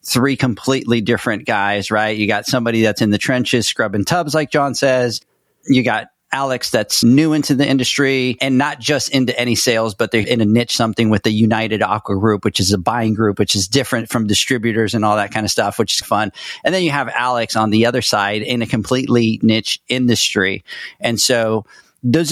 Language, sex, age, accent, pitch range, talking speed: English, male, 40-59, American, 110-125 Hz, 210 wpm